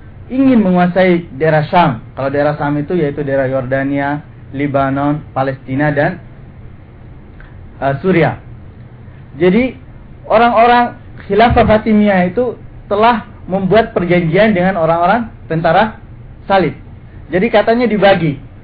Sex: male